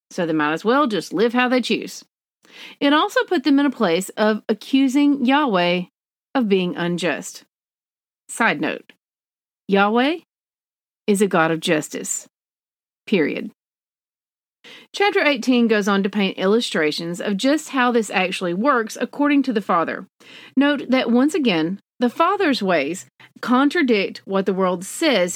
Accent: American